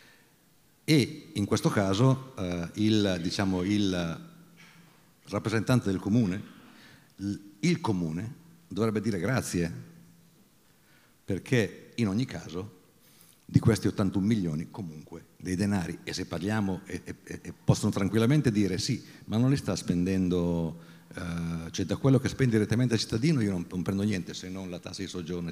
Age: 50-69